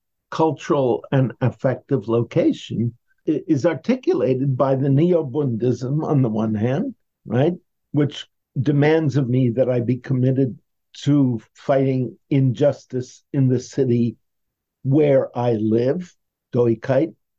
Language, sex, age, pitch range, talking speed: English, male, 50-69, 115-140 Hz, 110 wpm